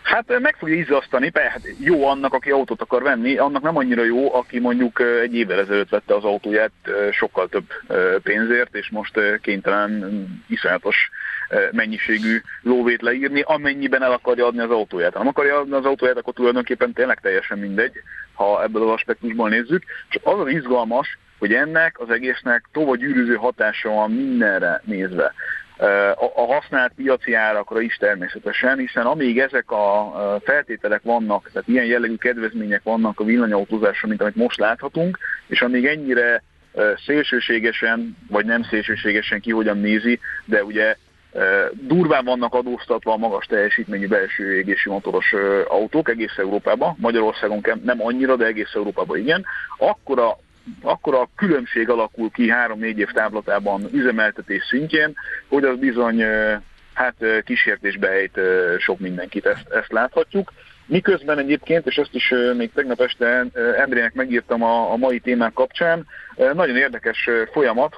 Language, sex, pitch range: Hungarian, male, 110-155 Hz